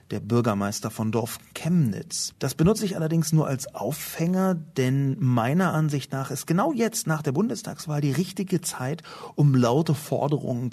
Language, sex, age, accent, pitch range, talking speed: German, male, 40-59, German, 115-150 Hz, 155 wpm